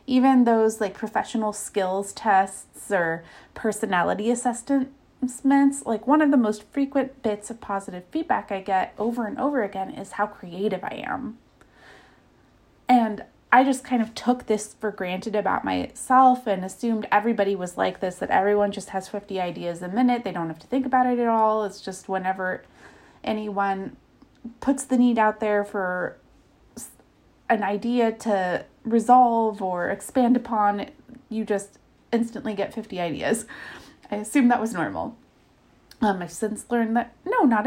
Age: 30-49